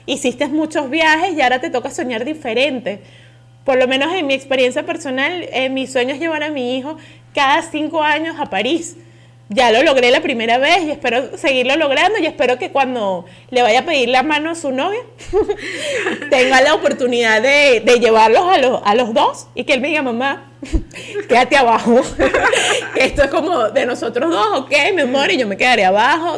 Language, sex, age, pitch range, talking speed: Spanish, female, 20-39, 230-305 Hz, 195 wpm